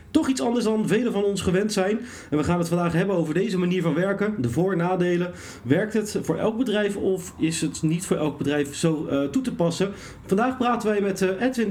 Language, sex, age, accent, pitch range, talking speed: Dutch, male, 40-59, Dutch, 170-210 Hz, 235 wpm